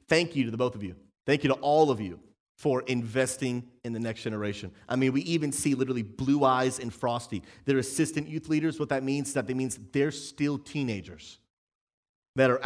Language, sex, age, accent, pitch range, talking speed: English, male, 30-49, American, 115-150 Hz, 220 wpm